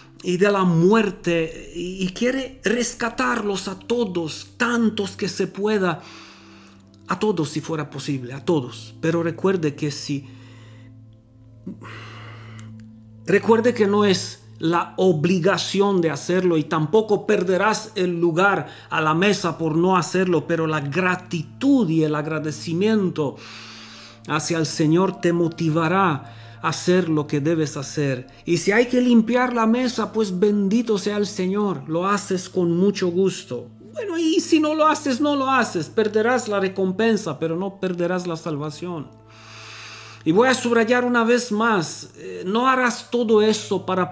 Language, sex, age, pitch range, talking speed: Romanian, male, 50-69, 150-205 Hz, 145 wpm